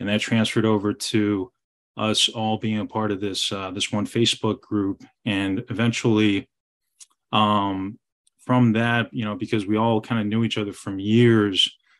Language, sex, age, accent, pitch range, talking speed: English, male, 20-39, American, 105-115 Hz, 170 wpm